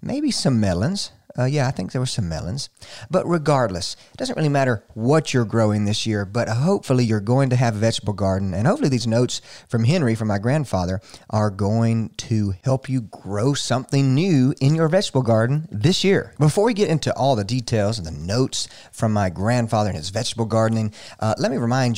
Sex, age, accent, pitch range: male, 40-59, American, 110-145 Hz